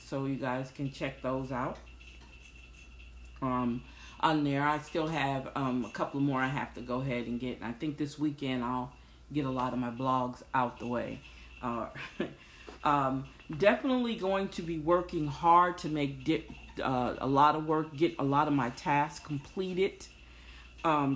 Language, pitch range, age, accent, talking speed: English, 125-170 Hz, 40-59, American, 180 wpm